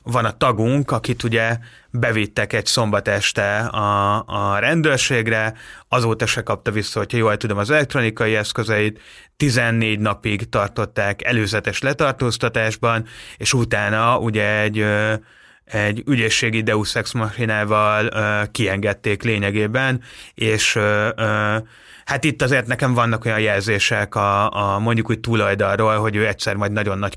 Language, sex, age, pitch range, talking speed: Hungarian, male, 30-49, 105-130 Hz, 125 wpm